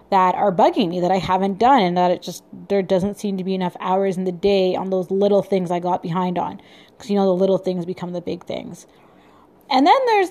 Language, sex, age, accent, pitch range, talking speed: English, female, 20-39, American, 185-215 Hz, 250 wpm